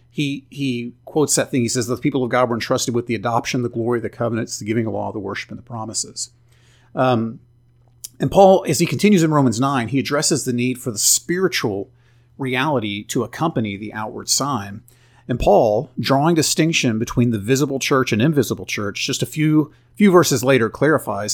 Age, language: 40-59, English